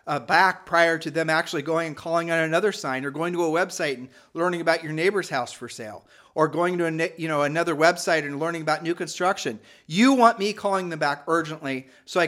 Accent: American